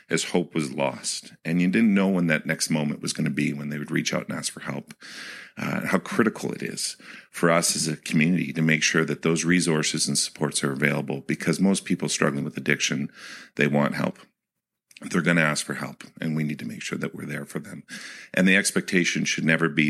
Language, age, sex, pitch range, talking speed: English, 50-69, male, 75-80 Hz, 230 wpm